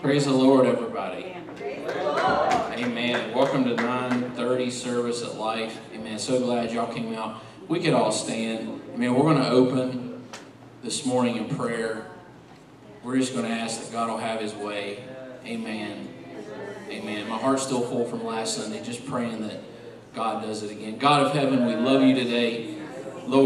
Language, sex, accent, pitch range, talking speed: English, male, American, 120-140 Hz, 170 wpm